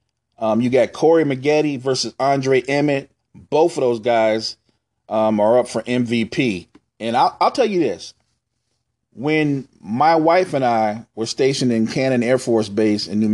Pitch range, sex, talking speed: 120-170 Hz, male, 165 wpm